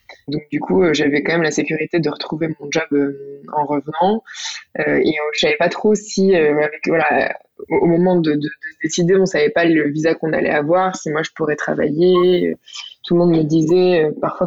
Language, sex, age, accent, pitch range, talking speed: French, female, 20-39, French, 150-180 Hz, 230 wpm